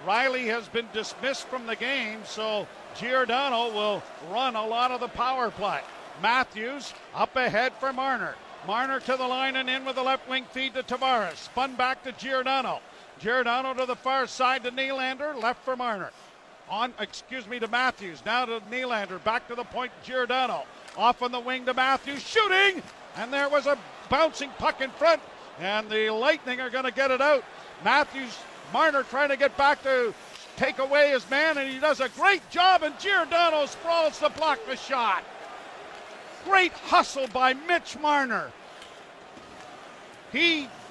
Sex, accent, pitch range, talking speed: male, American, 245-290 Hz, 170 wpm